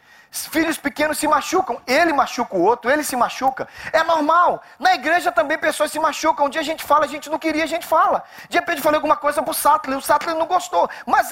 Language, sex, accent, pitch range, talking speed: Portuguese, male, Brazilian, 240-320 Hz, 235 wpm